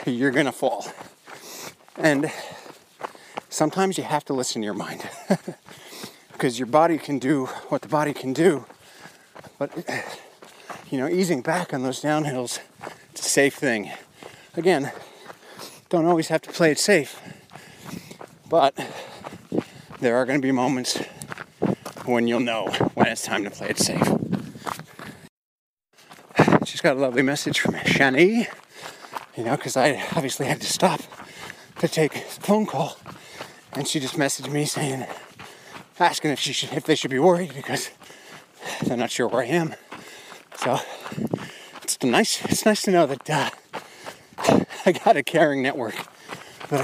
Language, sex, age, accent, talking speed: English, male, 40-59, American, 150 wpm